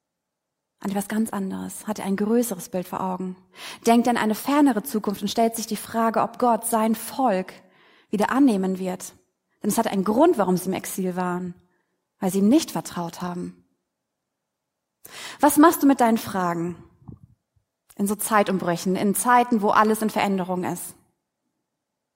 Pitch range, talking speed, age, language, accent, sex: 185-245 Hz, 165 wpm, 30-49, German, German, female